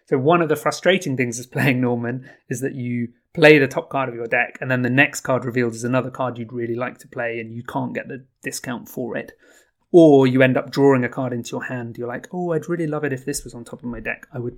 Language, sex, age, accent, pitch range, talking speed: English, male, 30-49, British, 120-145 Hz, 280 wpm